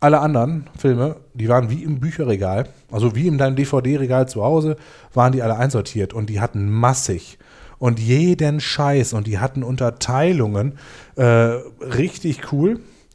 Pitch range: 120-155 Hz